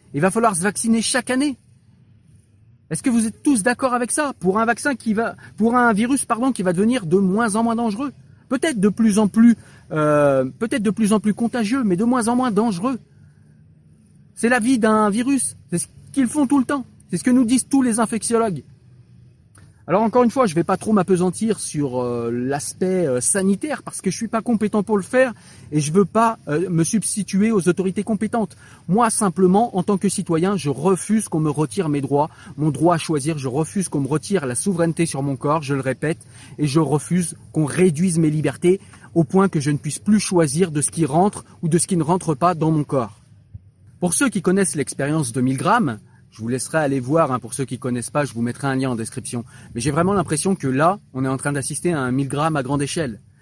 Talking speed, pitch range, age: 235 wpm, 140-220 Hz, 40-59